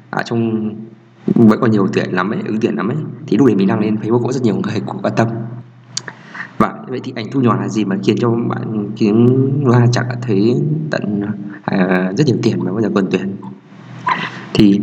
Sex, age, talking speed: male, 20-39, 220 wpm